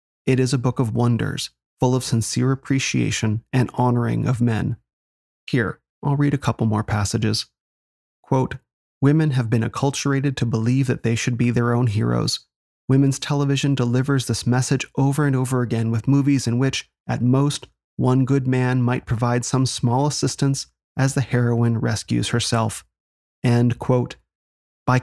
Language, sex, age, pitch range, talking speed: English, male, 30-49, 115-135 Hz, 160 wpm